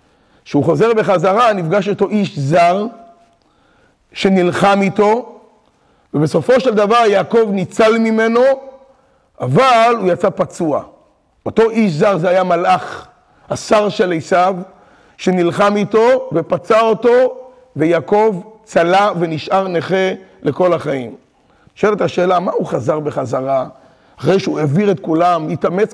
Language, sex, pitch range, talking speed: Hebrew, male, 175-225 Hz, 120 wpm